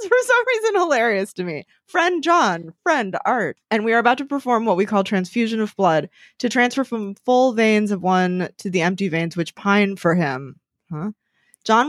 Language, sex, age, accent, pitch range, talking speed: English, female, 20-39, American, 170-220 Hz, 195 wpm